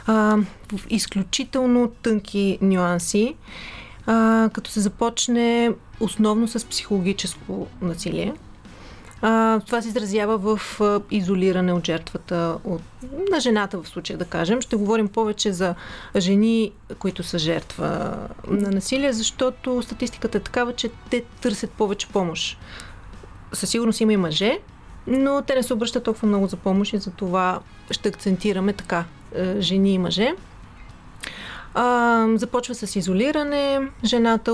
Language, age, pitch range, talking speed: Bulgarian, 30-49, 185-230 Hz, 125 wpm